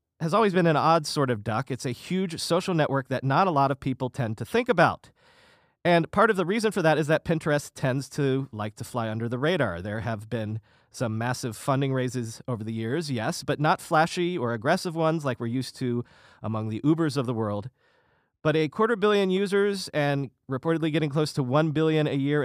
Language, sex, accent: English, male, American